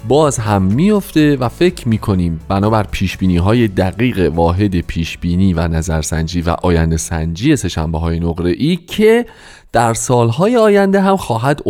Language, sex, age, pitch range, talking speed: Persian, male, 30-49, 95-150 Hz, 160 wpm